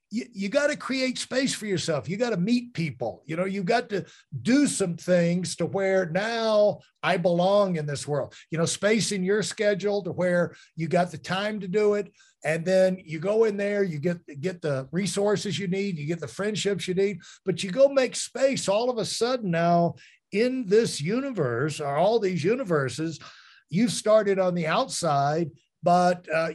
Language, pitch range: English, 160-205 Hz